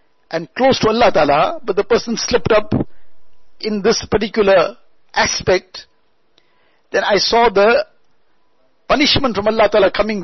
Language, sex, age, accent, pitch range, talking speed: English, male, 60-79, Indian, 190-245 Hz, 135 wpm